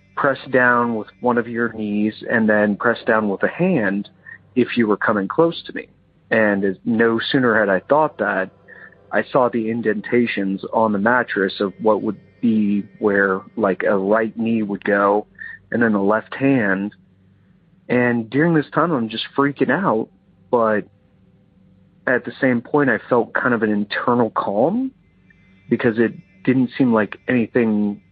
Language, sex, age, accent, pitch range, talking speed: English, male, 40-59, American, 100-125 Hz, 165 wpm